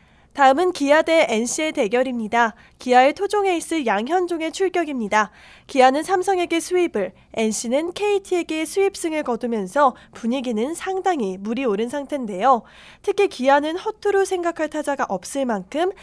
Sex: female